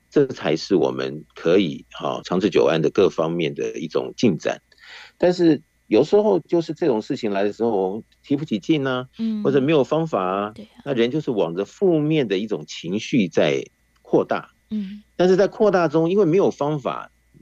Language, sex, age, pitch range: Chinese, male, 50-69, 100-170 Hz